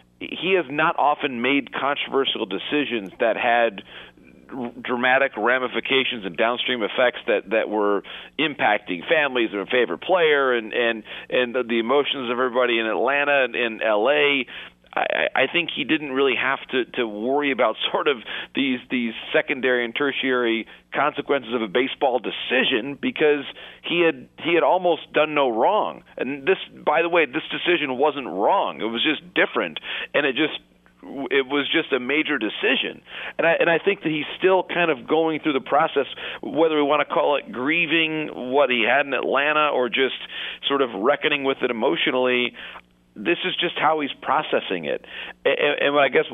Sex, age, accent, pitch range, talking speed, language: male, 40-59, American, 125-155 Hz, 175 wpm, English